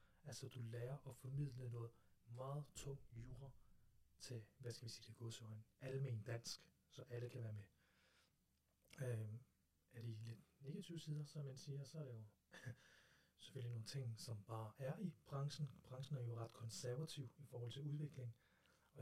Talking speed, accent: 175 wpm, native